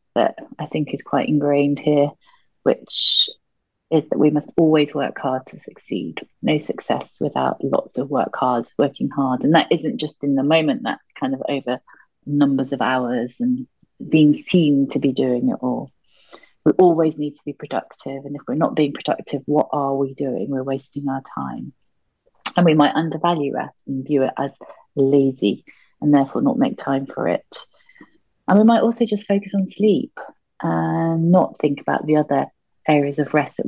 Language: English